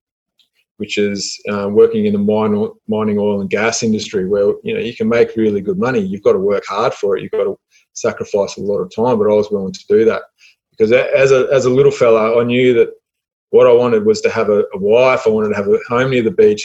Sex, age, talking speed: male, 20-39, 255 wpm